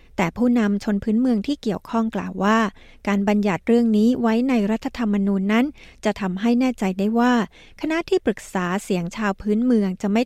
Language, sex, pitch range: Thai, female, 195-235 Hz